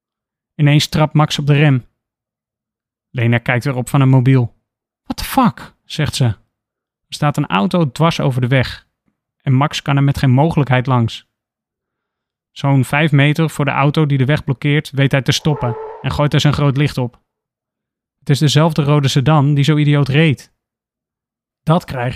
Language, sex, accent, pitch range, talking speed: Dutch, male, Dutch, 115-145 Hz, 175 wpm